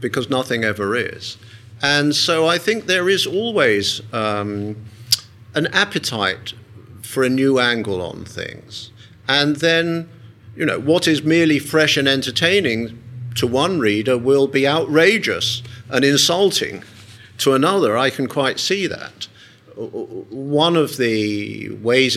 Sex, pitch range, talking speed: male, 110-145 Hz, 135 wpm